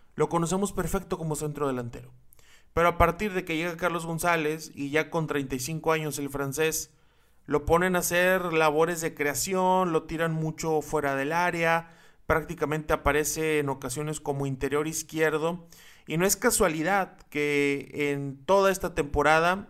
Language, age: Spanish, 30-49